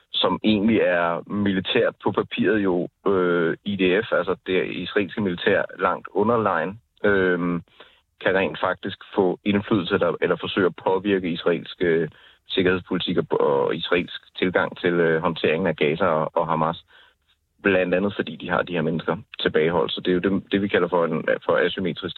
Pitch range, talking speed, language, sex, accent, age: 85-105 Hz, 170 wpm, Danish, male, native, 30-49